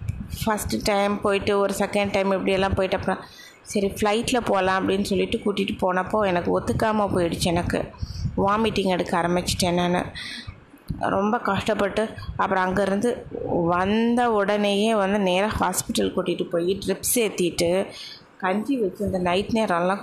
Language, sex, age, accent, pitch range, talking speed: Tamil, female, 20-39, native, 180-215 Hz, 125 wpm